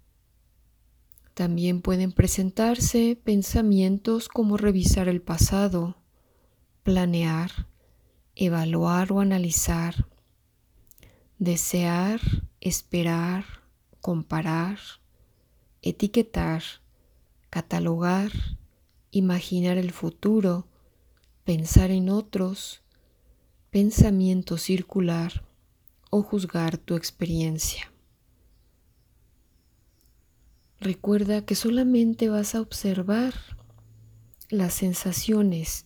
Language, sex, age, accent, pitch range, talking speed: Spanish, female, 30-49, Mexican, 160-195 Hz, 60 wpm